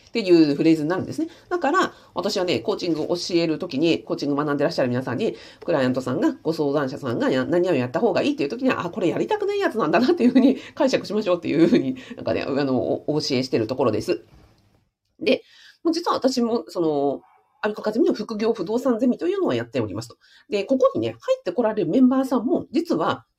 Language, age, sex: Japanese, 40-59, female